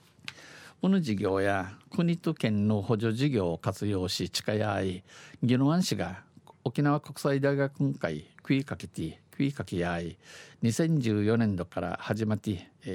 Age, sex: 50-69, male